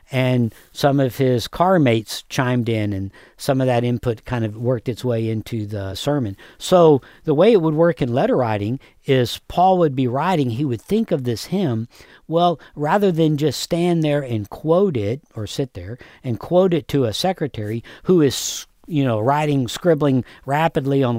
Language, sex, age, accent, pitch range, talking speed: English, male, 60-79, American, 115-150 Hz, 190 wpm